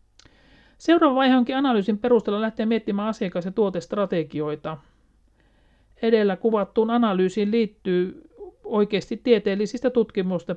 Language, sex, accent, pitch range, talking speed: Finnish, male, native, 160-210 Hz, 95 wpm